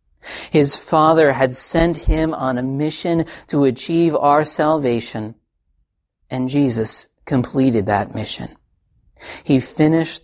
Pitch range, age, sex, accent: 105-140 Hz, 40-59, male, American